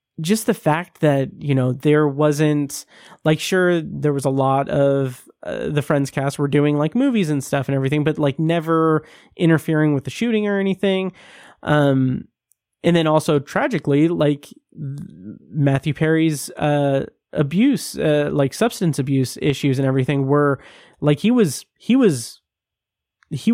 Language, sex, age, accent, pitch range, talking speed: English, male, 30-49, American, 135-165 Hz, 155 wpm